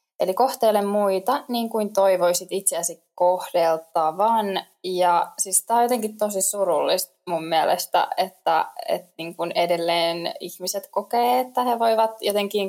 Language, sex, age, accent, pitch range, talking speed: Finnish, female, 20-39, native, 175-215 Hz, 125 wpm